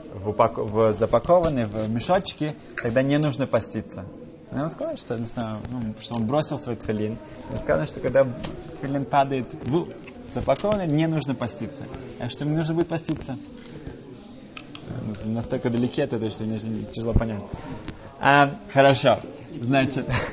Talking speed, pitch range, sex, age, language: 135 wpm, 110-140 Hz, male, 20-39, Russian